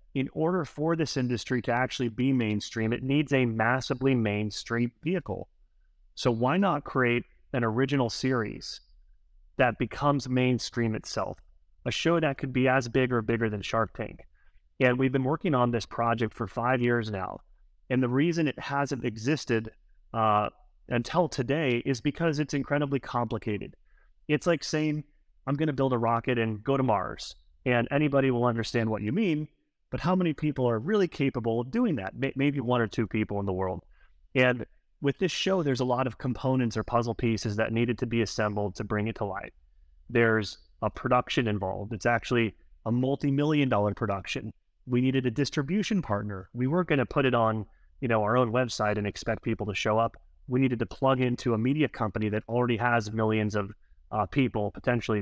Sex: male